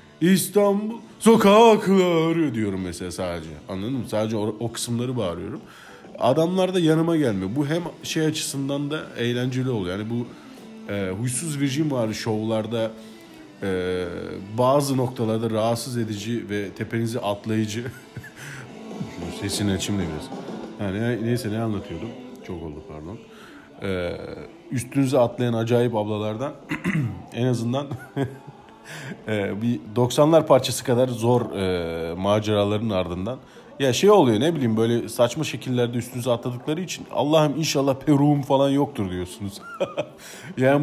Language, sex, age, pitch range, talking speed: Turkish, male, 40-59, 105-145 Hz, 125 wpm